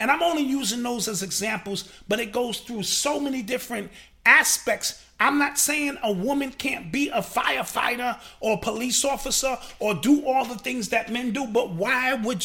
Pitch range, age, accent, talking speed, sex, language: 215-275 Hz, 30-49, American, 185 wpm, male, English